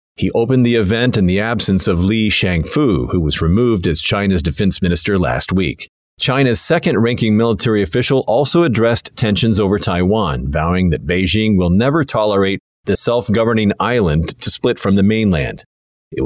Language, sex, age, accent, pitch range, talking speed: English, male, 40-59, American, 95-115 Hz, 160 wpm